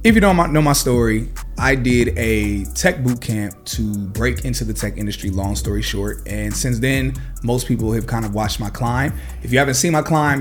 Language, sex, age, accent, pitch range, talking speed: English, male, 30-49, American, 110-140 Hz, 220 wpm